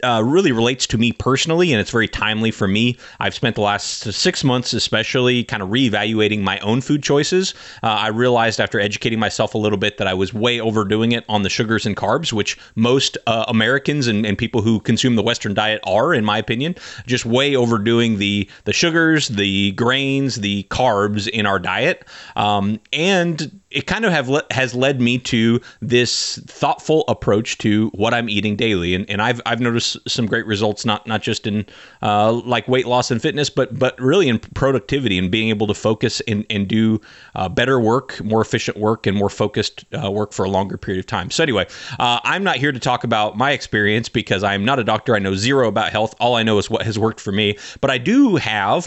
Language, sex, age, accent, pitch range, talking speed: English, male, 30-49, American, 105-130 Hz, 215 wpm